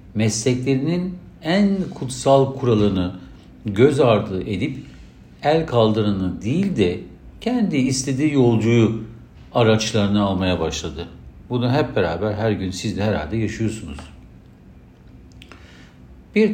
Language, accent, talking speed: Turkish, native, 100 wpm